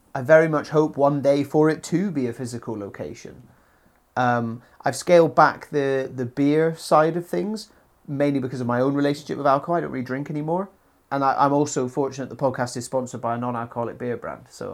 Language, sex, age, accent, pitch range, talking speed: English, male, 30-49, British, 130-160 Hz, 210 wpm